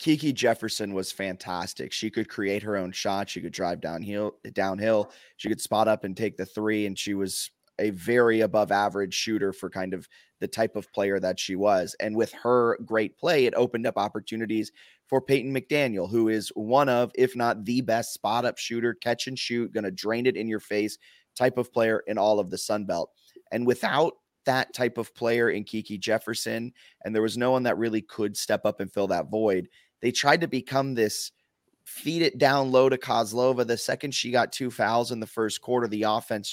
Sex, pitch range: male, 105-130 Hz